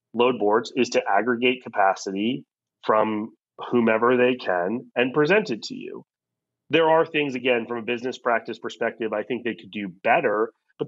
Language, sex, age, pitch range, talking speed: English, male, 30-49, 115-135 Hz, 170 wpm